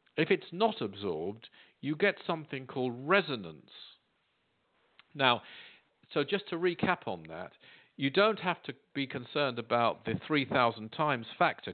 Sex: male